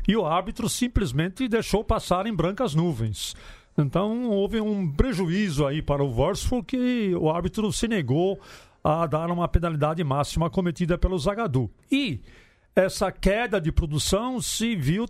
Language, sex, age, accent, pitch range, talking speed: Portuguese, male, 50-69, Brazilian, 150-215 Hz, 145 wpm